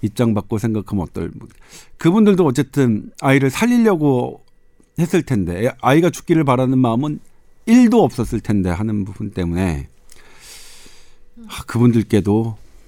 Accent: native